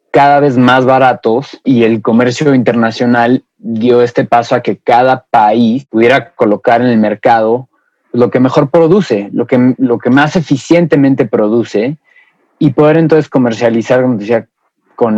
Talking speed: 150 wpm